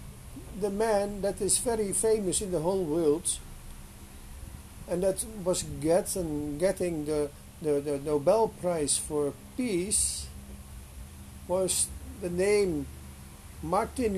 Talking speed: 110 wpm